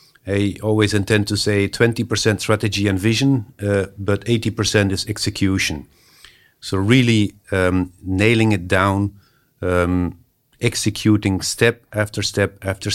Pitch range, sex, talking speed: 95-115 Hz, male, 120 wpm